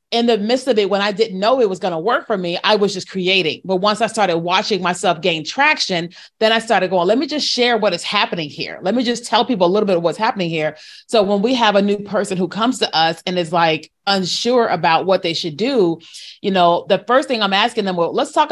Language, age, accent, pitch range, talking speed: English, 30-49, American, 175-225 Hz, 270 wpm